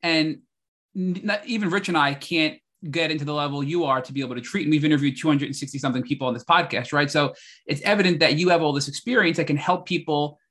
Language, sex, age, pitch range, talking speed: English, male, 30-49, 140-170 Hz, 235 wpm